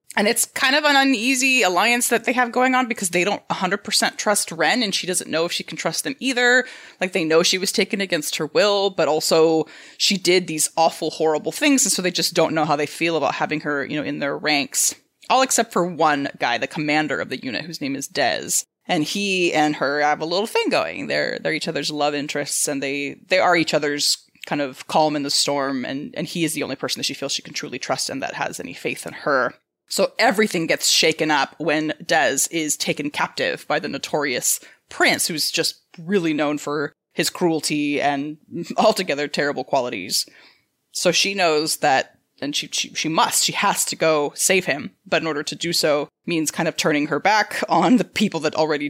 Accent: American